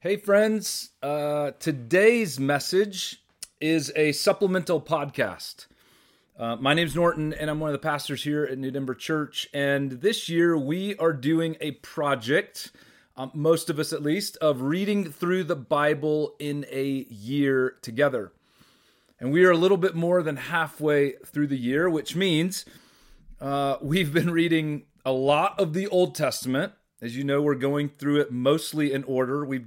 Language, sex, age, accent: English, male, 30-49, American